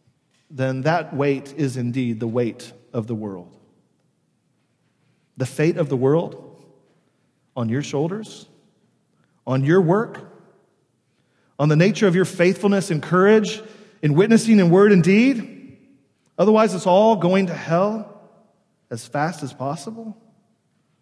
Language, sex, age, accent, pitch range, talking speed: English, male, 40-59, American, 130-190 Hz, 130 wpm